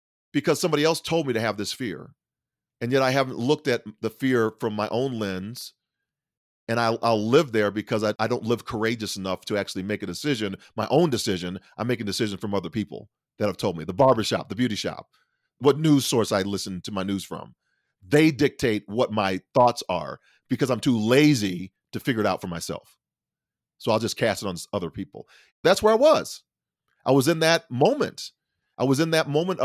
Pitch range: 110-165 Hz